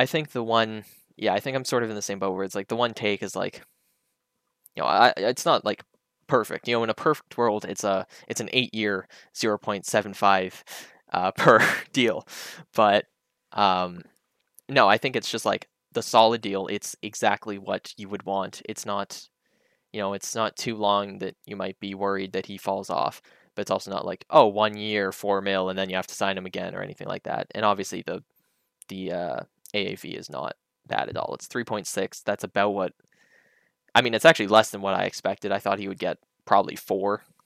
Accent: American